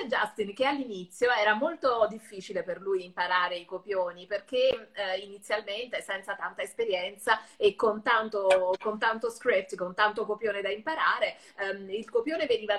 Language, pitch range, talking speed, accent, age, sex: Italian, 200-280 Hz, 145 wpm, native, 30-49, female